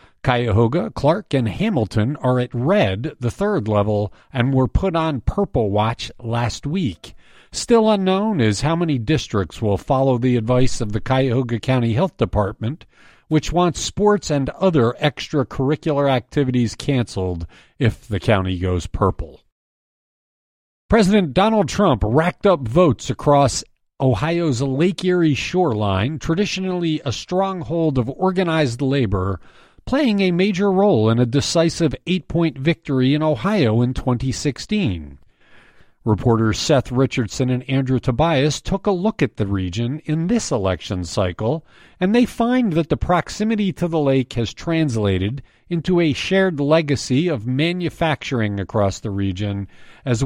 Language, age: English, 50-69